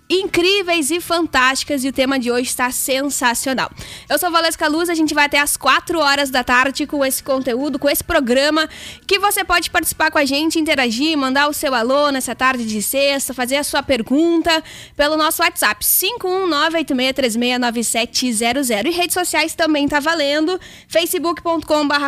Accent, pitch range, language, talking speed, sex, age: Brazilian, 260-320 Hz, Portuguese, 165 wpm, female, 10-29